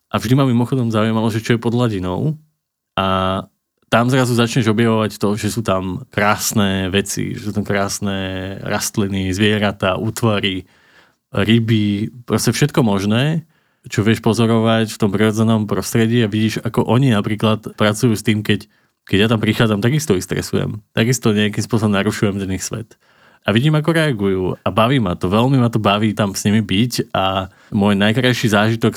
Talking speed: 170 wpm